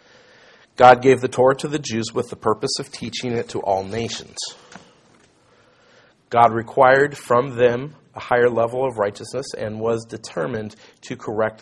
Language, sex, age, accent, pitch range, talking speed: English, male, 40-59, American, 105-125 Hz, 155 wpm